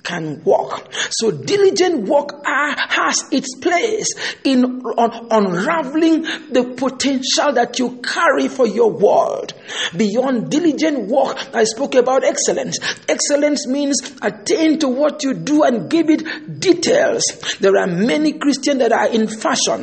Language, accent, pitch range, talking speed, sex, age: English, Nigerian, 230-310 Hz, 135 wpm, male, 50-69